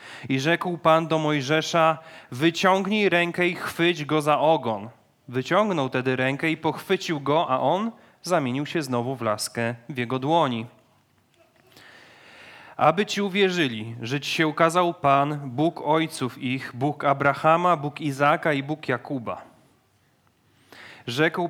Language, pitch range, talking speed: Polish, 130-165 Hz, 130 wpm